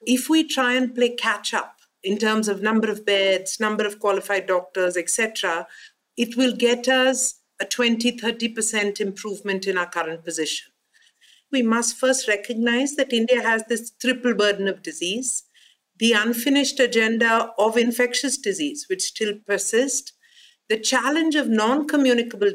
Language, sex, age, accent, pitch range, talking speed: English, female, 50-69, Indian, 200-255 Hz, 145 wpm